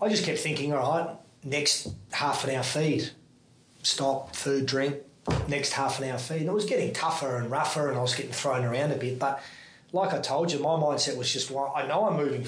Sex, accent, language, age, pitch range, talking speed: male, Australian, English, 30-49, 125-145 Hz, 230 wpm